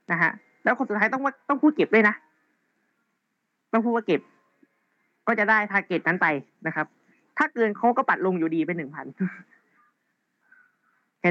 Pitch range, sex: 175-245 Hz, female